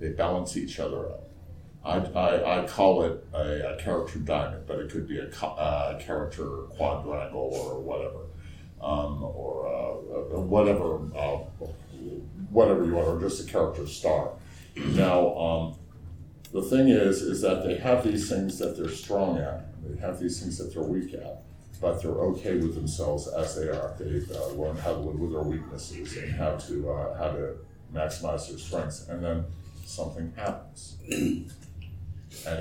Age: 50-69